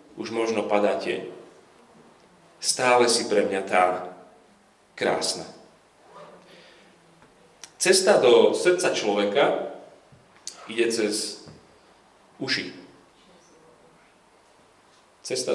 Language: Slovak